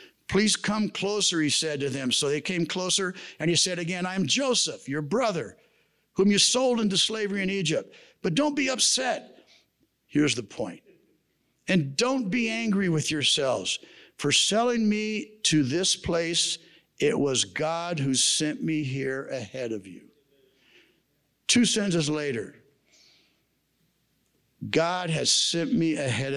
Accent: American